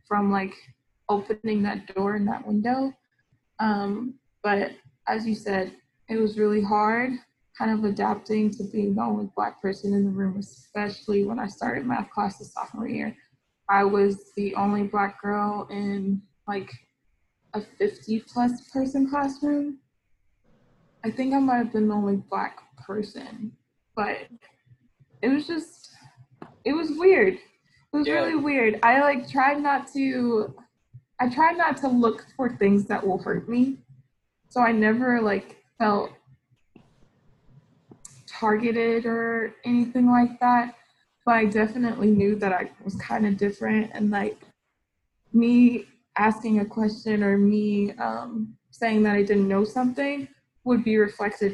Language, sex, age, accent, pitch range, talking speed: English, female, 20-39, American, 200-240 Hz, 145 wpm